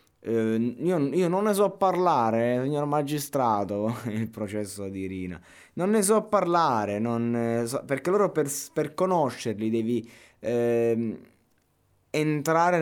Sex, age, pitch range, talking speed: male, 20-39, 105-130 Hz, 120 wpm